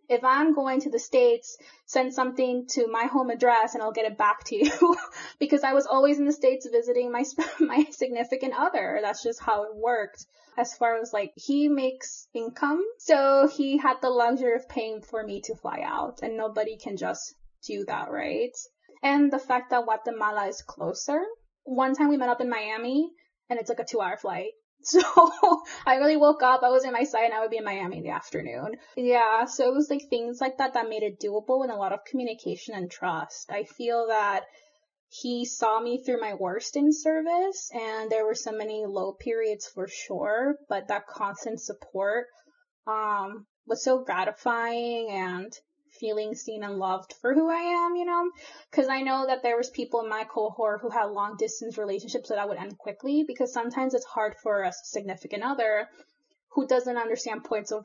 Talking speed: 200 wpm